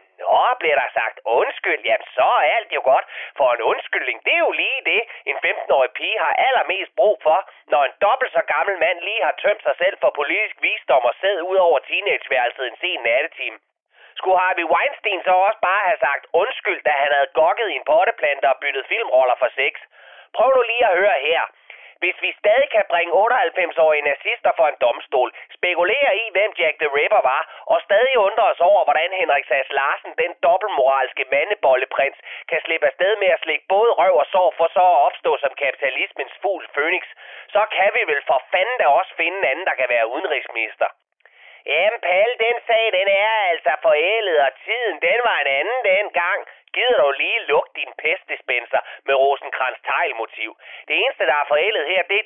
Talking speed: 190 wpm